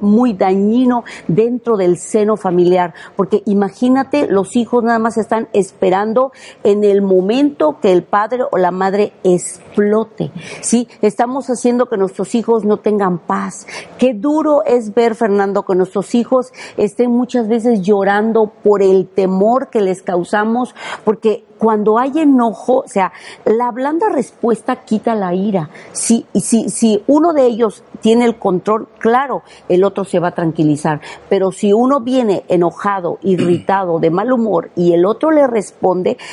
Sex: female